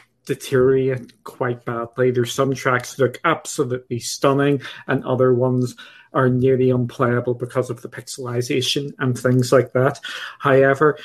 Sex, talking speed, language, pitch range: male, 135 wpm, English, 125-135 Hz